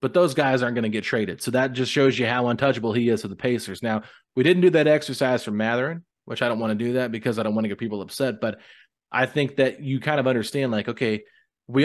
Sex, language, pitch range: male, English, 110-130 Hz